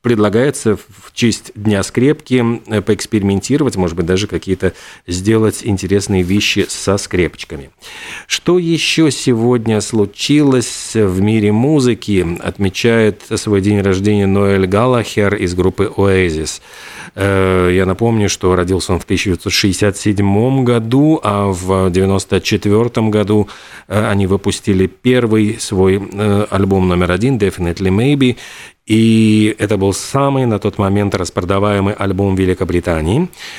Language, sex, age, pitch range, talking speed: Russian, male, 40-59, 100-120 Hz, 110 wpm